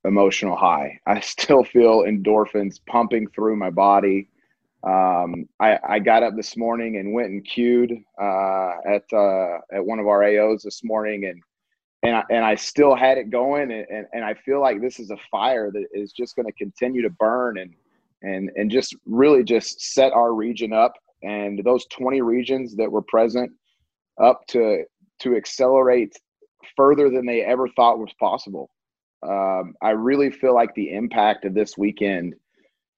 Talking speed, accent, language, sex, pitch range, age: 170 wpm, American, English, male, 105-130 Hz, 30-49